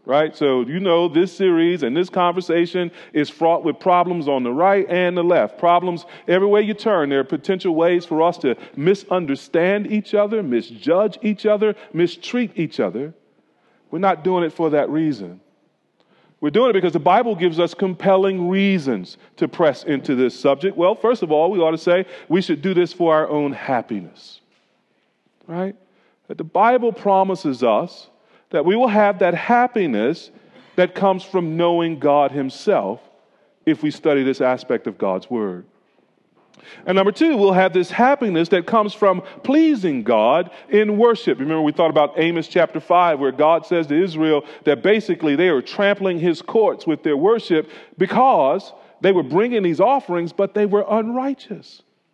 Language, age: English, 40-59